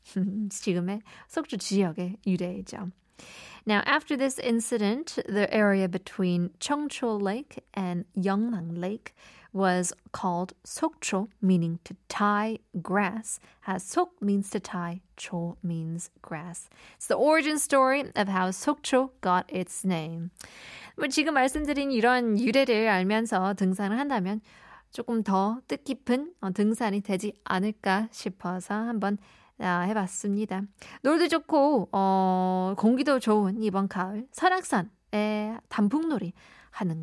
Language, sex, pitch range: Korean, female, 185-250 Hz